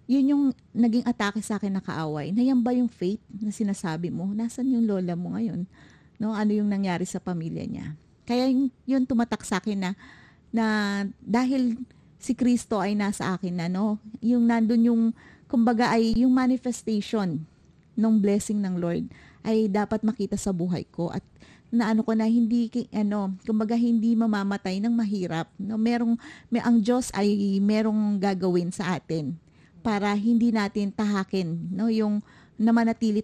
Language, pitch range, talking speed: Filipino, 185-230 Hz, 160 wpm